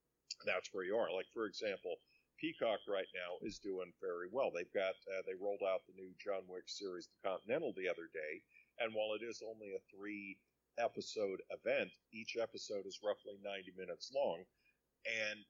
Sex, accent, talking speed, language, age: male, American, 180 wpm, English, 50-69